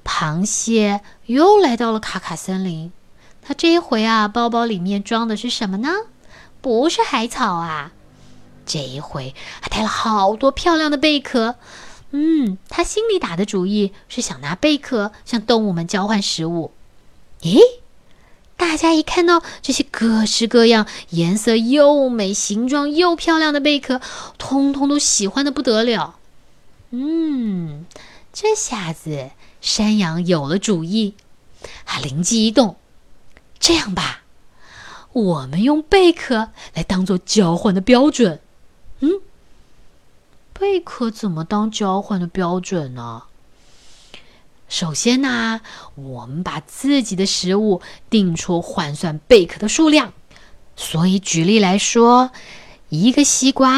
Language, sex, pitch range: Chinese, female, 180-275 Hz